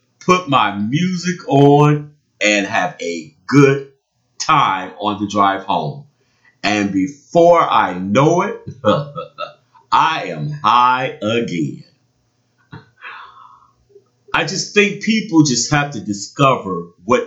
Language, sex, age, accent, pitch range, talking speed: English, male, 50-69, American, 115-150 Hz, 110 wpm